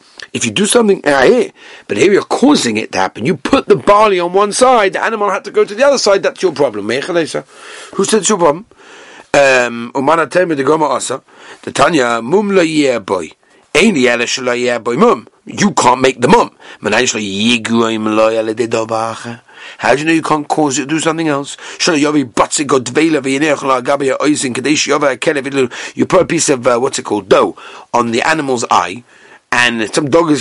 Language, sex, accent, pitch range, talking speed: English, male, British, 120-170 Hz, 140 wpm